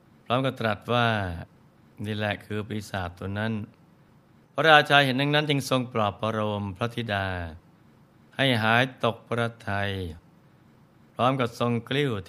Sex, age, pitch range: male, 60-79, 105-125 Hz